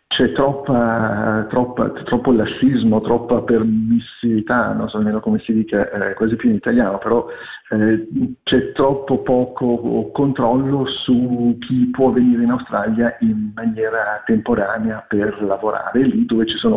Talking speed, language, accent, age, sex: 140 wpm, Italian, native, 50-69, male